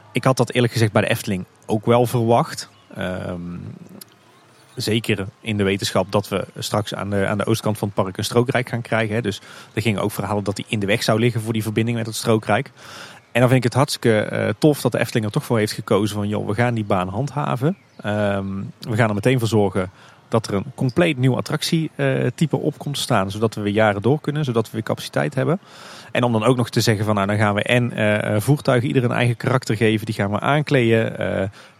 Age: 30-49